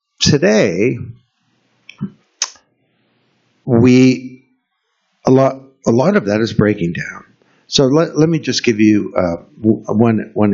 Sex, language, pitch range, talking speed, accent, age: male, English, 105-135 Hz, 120 wpm, American, 60-79